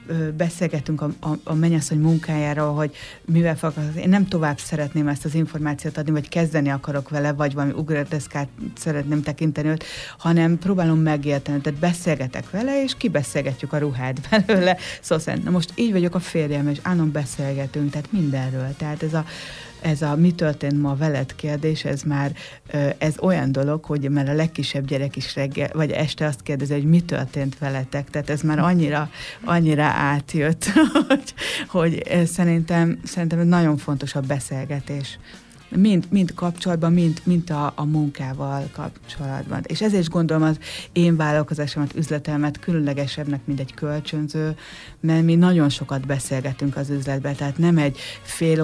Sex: female